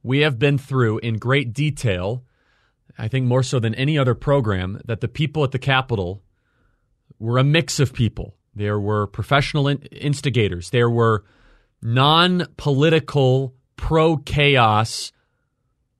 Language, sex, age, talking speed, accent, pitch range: English, male, 30-49, 130 wpm, American, 115-145 Hz